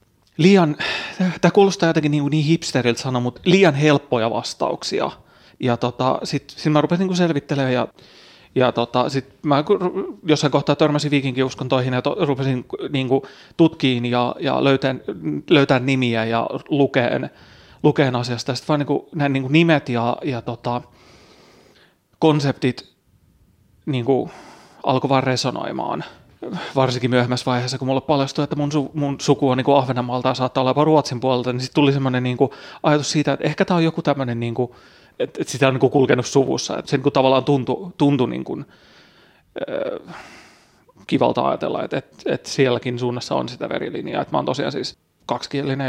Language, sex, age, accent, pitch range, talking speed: Finnish, male, 30-49, native, 125-150 Hz, 145 wpm